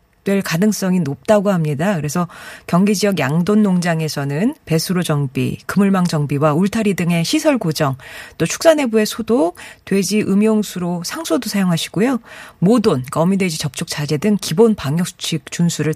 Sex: female